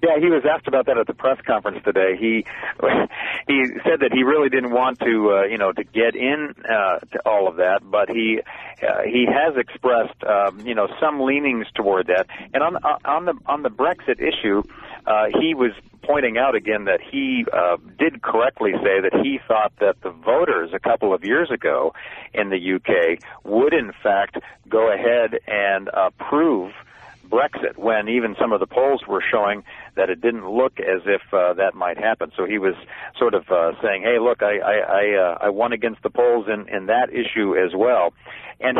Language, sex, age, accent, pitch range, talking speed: English, male, 50-69, American, 105-140 Hz, 200 wpm